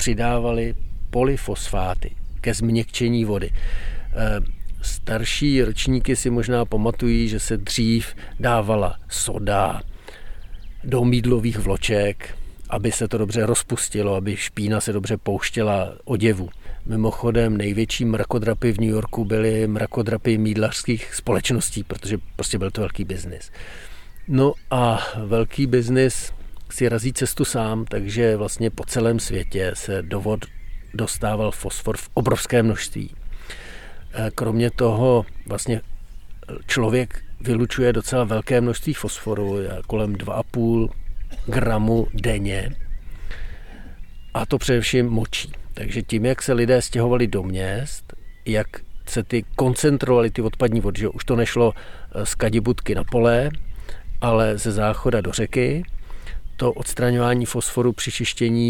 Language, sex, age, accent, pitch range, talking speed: Czech, male, 50-69, native, 100-120 Hz, 120 wpm